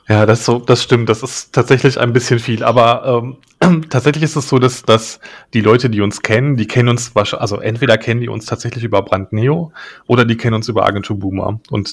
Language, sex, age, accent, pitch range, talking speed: German, male, 30-49, German, 105-125 Hz, 225 wpm